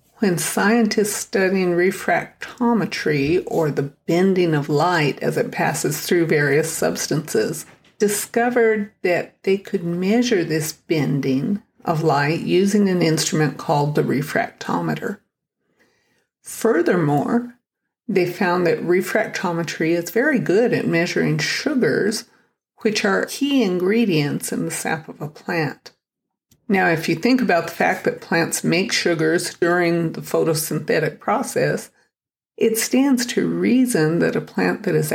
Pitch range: 160-210 Hz